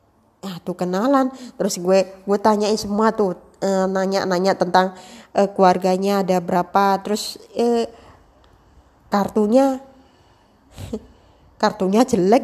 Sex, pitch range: female, 190-235 Hz